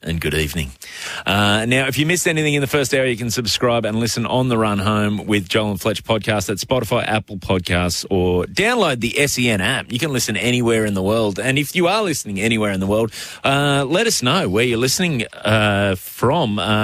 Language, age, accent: English, 30-49, Australian